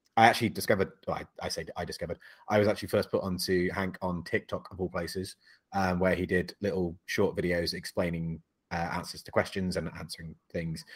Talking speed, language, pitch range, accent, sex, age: 195 wpm, English, 90-115 Hz, British, male, 30-49